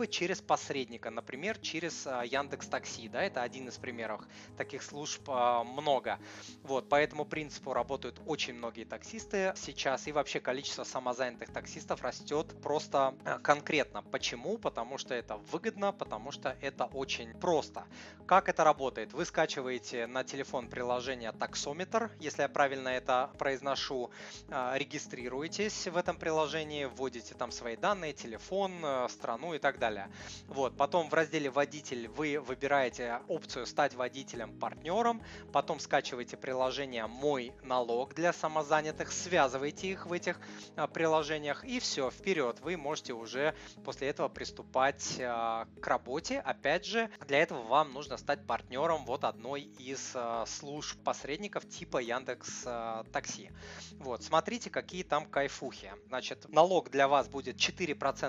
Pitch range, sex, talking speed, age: 125-160 Hz, male, 130 wpm, 20-39